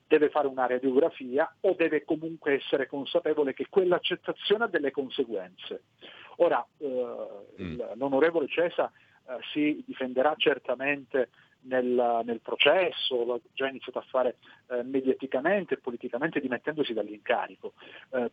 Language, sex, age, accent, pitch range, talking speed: Italian, male, 40-59, native, 130-215 Hz, 120 wpm